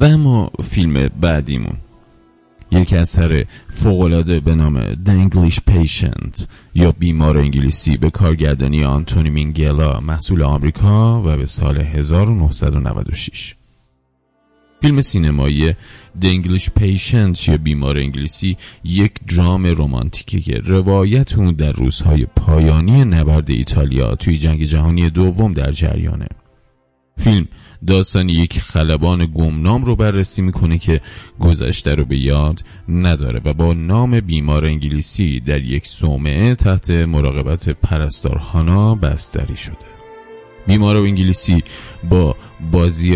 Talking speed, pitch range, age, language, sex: 110 wpm, 75-95 Hz, 30-49, Persian, male